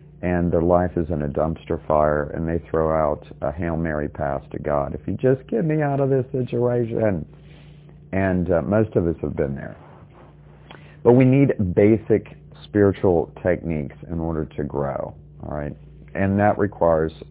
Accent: American